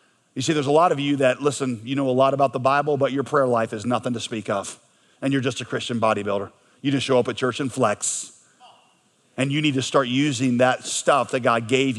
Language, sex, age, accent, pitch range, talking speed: English, male, 40-59, American, 130-170 Hz, 250 wpm